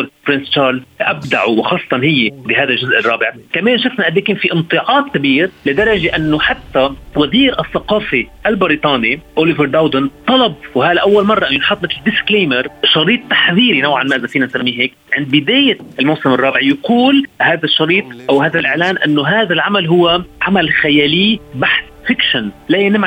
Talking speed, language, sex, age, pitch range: 145 wpm, Arabic, male, 30-49, 145-210 Hz